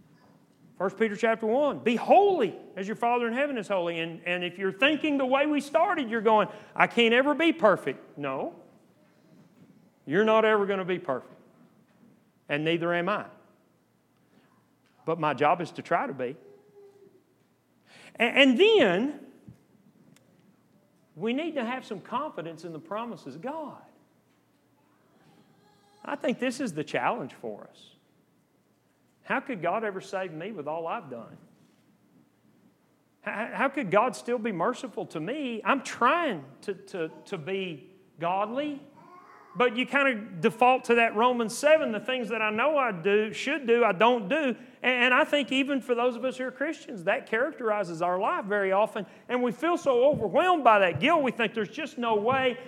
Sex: male